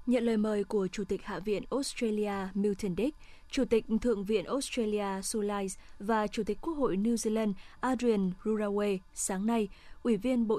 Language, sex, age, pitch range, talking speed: Vietnamese, female, 20-39, 200-235 Hz, 175 wpm